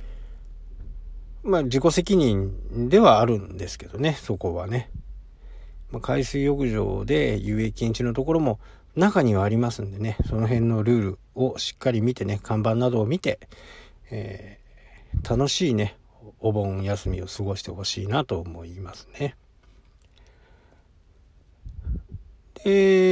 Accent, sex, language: native, male, Japanese